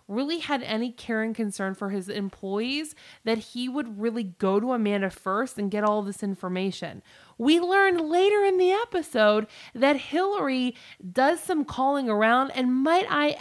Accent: American